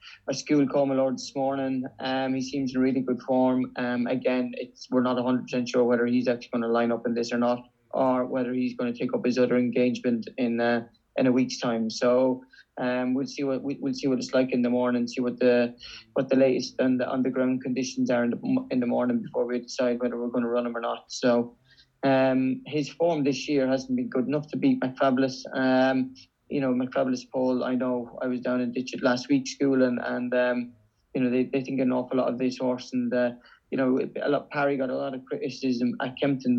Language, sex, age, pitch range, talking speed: English, male, 20-39, 125-135 Hz, 240 wpm